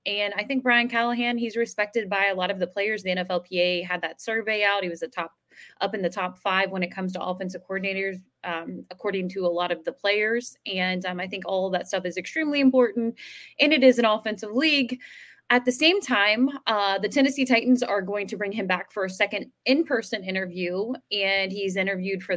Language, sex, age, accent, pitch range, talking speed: English, female, 20-39, American, 175-225 Hz, 220 wpm